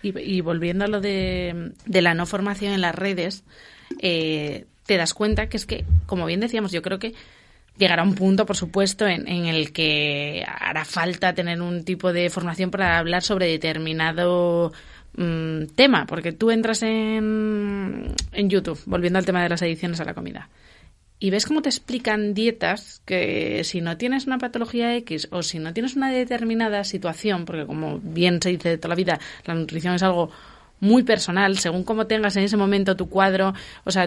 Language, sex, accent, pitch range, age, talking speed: Spanish, female, Spanish, 175-215 Hz, 30-49, 190 wpm